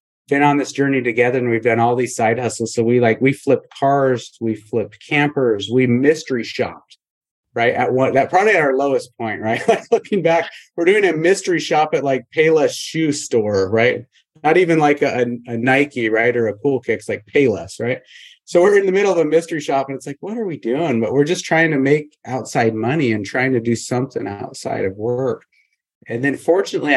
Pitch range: 115-145 Hz